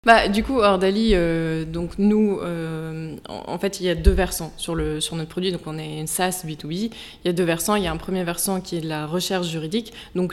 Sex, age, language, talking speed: female, 20-39, French, 265 wpm